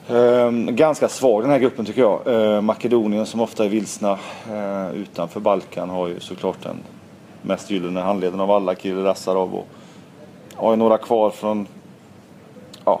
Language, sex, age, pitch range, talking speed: Swedish, male, 30-49, 90-110 Hz, 155 wpm